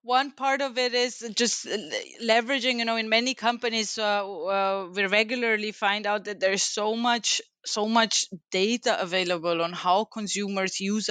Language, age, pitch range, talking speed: English, 20-39, 175-215 Hz, 160 wpm